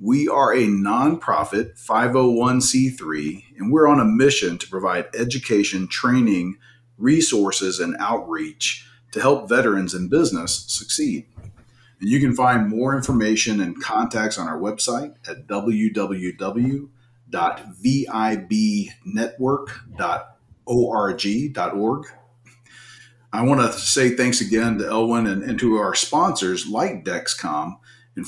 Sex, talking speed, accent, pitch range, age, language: male, 110 wpm, American, 110-130 Hz, 40-59, English